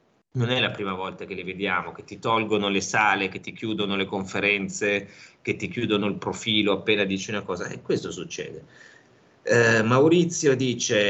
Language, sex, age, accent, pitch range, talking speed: Italian, male, 30-49, native, 90-115 Hz, 180 wpm